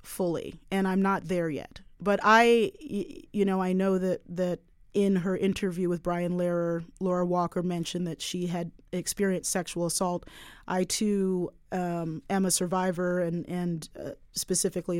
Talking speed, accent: 155 wpm, American